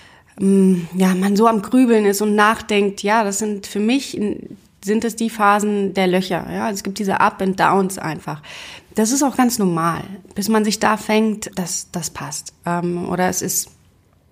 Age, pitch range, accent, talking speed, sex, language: 30-49, 195-235 Hz, German, 180 wpm, female, German